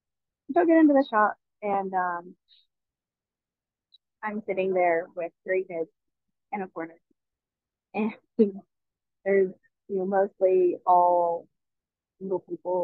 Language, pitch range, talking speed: English, 175-205 Hz, 115 wpm